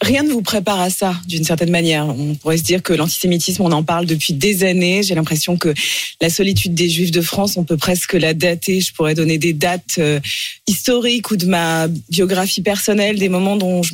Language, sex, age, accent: French, female, 30-49, French